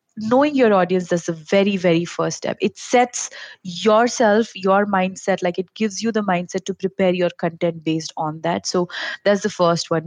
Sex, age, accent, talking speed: female, 30-49, Indian, 190 wpm